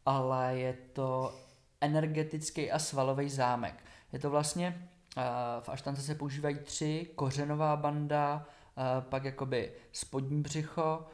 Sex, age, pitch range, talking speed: male, 20-39, 130-145 Hz, 115 wpm